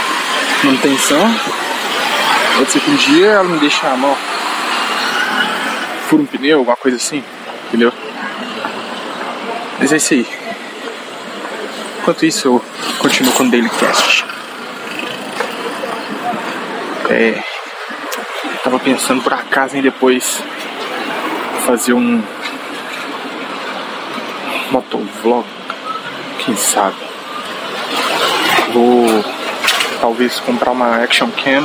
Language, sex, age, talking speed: Portuguese, male, 20-39, 90 wpm